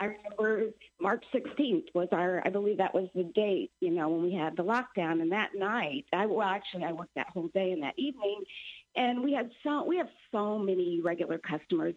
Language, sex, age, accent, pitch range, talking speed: English, female, 50-69, American, 175-210 Hz, 215 wpm